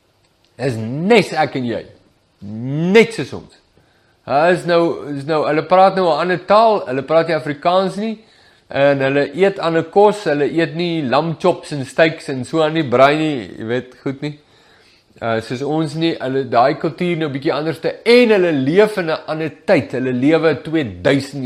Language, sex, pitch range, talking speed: English, male, 125-175 Hz, 180 wpm